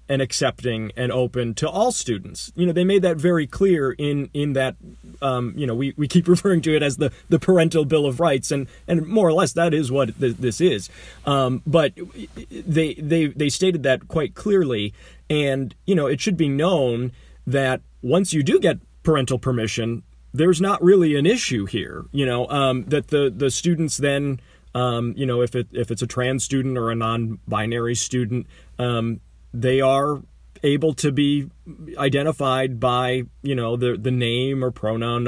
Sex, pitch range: male, 120-155 Hz